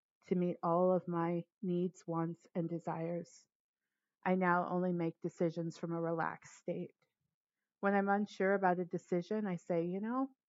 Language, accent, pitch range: English, American, 170-195 Hz